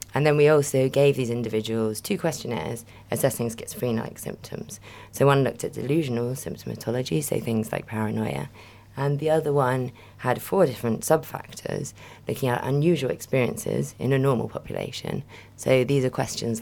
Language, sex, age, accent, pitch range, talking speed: English, female, 30-49, British, 110-125 Hz, 150 wpm